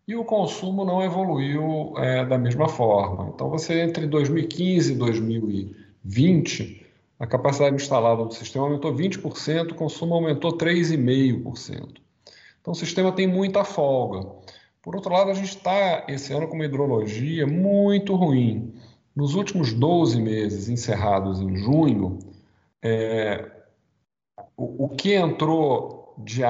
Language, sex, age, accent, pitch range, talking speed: Portuguese, male, 50-69, Brazilian, 115-165 Hz, 125 wpm